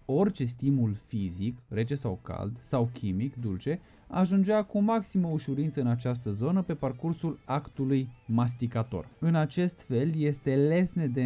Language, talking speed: Romanian, 140 wpm